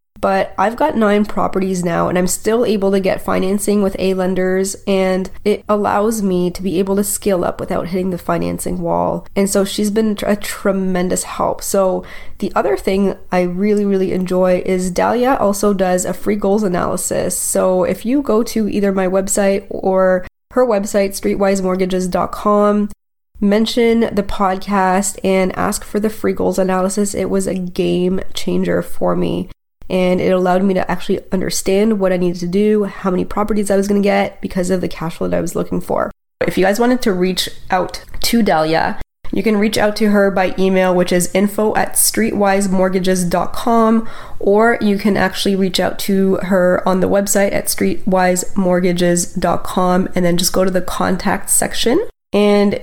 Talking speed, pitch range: 175 wpm, 185-205 Hz